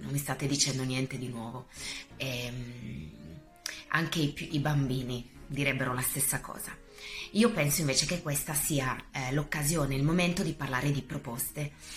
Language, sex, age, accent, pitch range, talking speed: Italian, female, 30-49, native, 130-160 Hz, 150 wpm